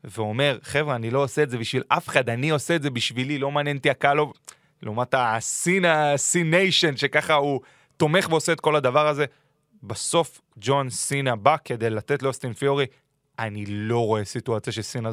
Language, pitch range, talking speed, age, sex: Hebrew, 120-150 Hz, 165 wpm, 30-49, male